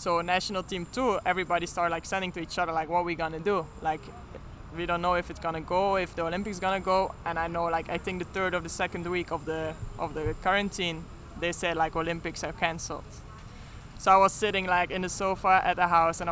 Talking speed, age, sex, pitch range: 250 wpm, 20-39, male, 165-195 Hz